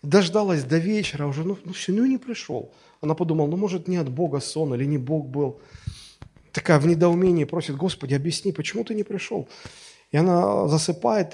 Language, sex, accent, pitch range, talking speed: Russian, male, native, 120-165 Hz, 185 wpm